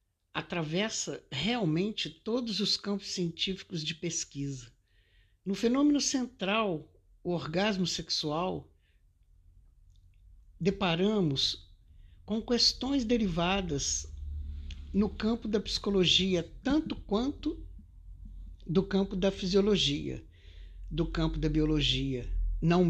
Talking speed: 85 wpm